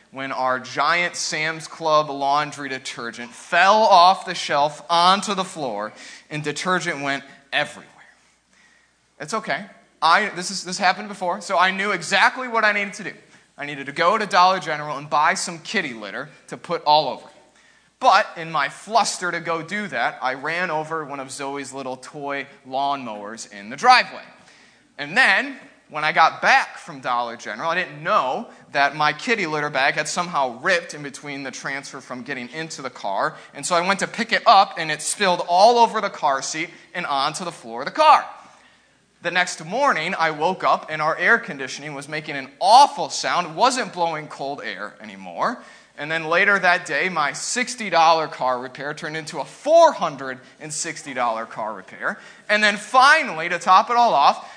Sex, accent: male, American